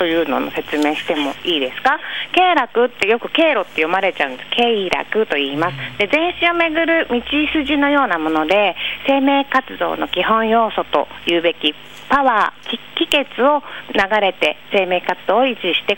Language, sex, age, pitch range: Japanese, female, 40-59, 175-270 Hz